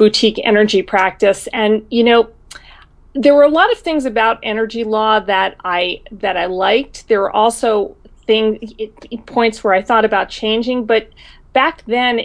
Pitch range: 190-230 Hz